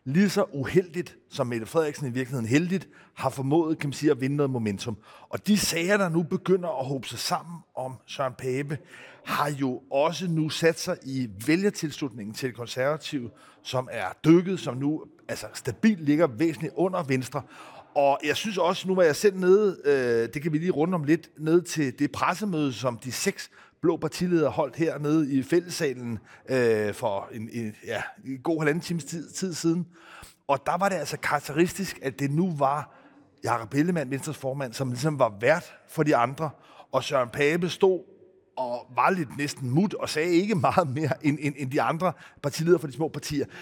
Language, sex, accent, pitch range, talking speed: Danish, male, native, 135-175 Hz, 190 wpm